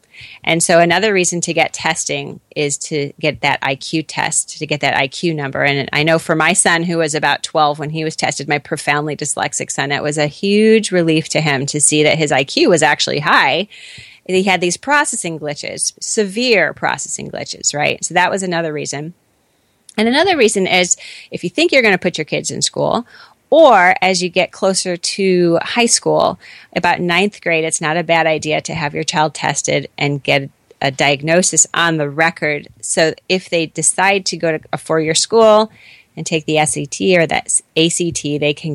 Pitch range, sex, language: 150-180 Hz, female, English